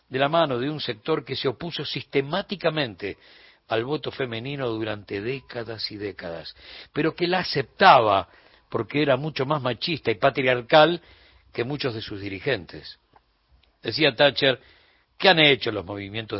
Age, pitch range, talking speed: 60-79, 110-150 Hz, 145 wpm